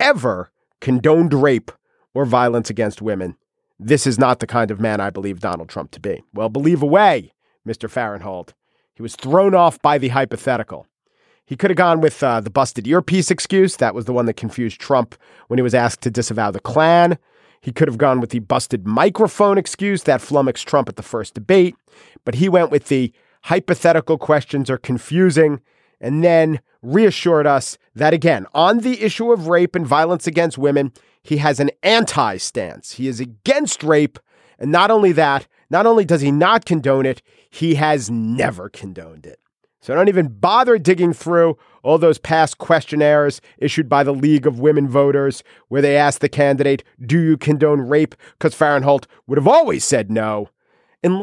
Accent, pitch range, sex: American, 125-170 Hz, male